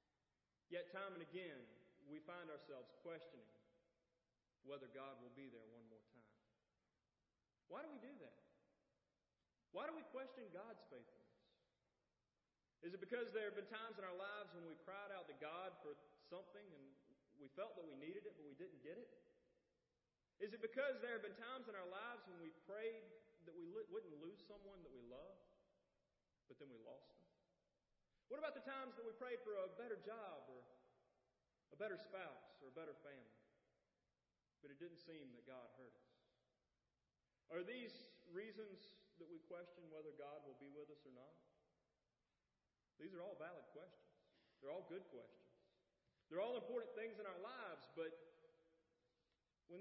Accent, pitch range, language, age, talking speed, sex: American, 150-235 Hz, English, 40-59, 170 wpm, male